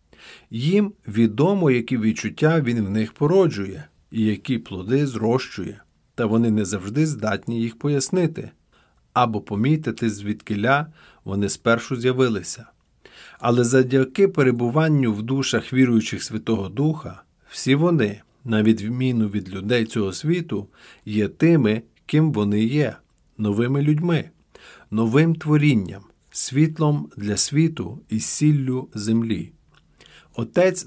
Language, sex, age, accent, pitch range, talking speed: Ukrainian, male, 40-59, native, 110-150 Hz, 110 wpm